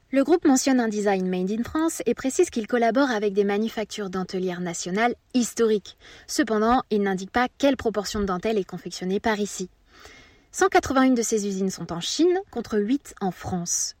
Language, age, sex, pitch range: French, 20-39, female, 205-260 Hz